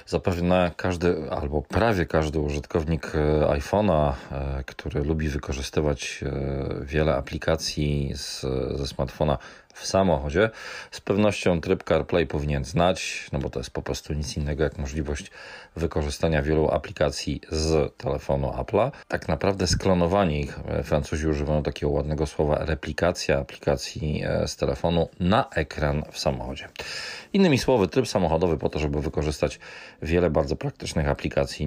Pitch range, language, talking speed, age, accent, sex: 75-90 Hz, Polish, 125 wpm, 40-59, native, male